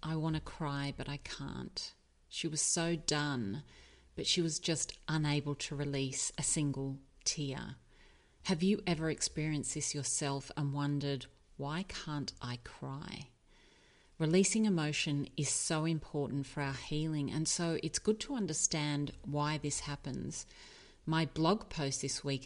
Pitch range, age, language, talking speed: 135-160 Hz, 40-59, English, 145 wpm